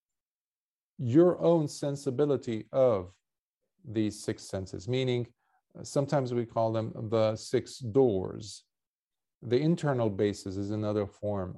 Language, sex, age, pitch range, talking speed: English, male, 40-59, 110-145 Hz, 115 wpm